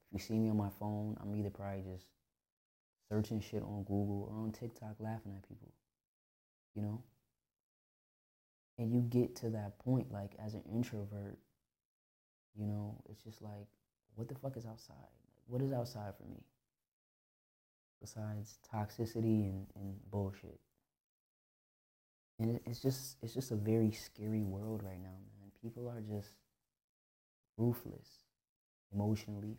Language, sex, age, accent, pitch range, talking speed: English, male, 20-39, American, 100-115 Hz, 140 wpm